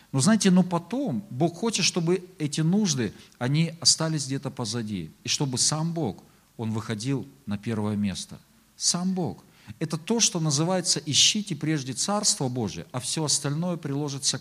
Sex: male